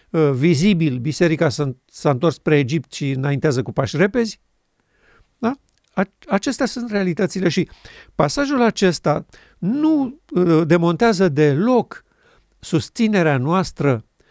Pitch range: 145-205 Hz